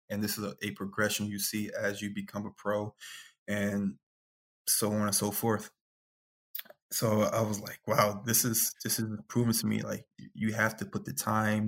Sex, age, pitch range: male, 20-39, 105-110 Hz